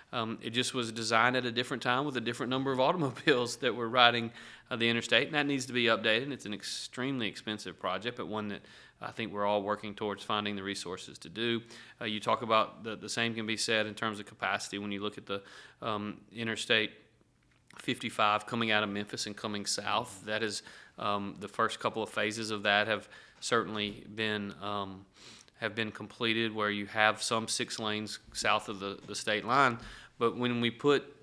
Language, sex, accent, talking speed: English, male, American, 210 wpm